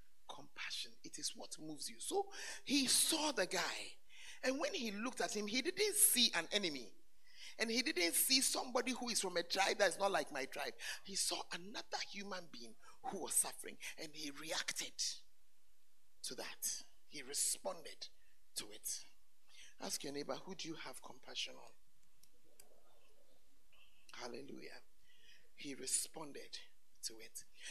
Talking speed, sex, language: 150 wpm, male, English